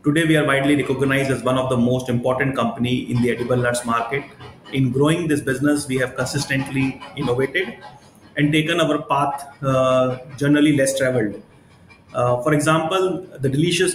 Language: English